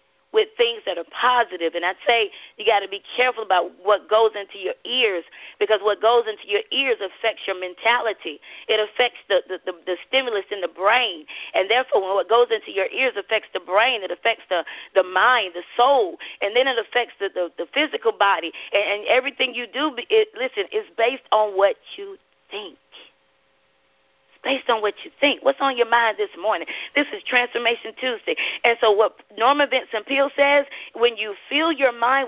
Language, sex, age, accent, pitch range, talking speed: English, female, 30-49, American, 205-275 Hz, 190 wpm